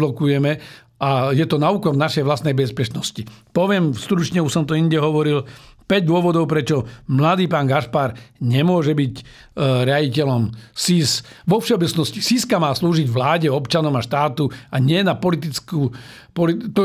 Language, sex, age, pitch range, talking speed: Slovak, male, 50-69, 140-180 Hz, 140 wpm